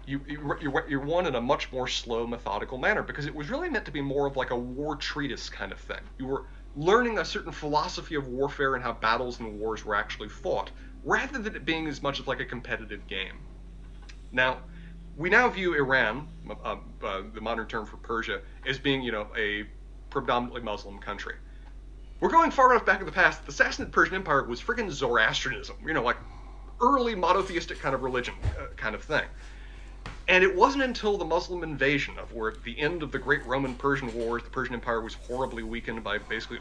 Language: English